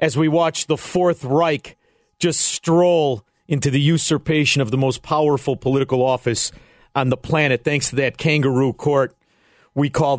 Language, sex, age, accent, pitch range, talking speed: English, male, 50-69, American, 140-175 Hz, 160 wpm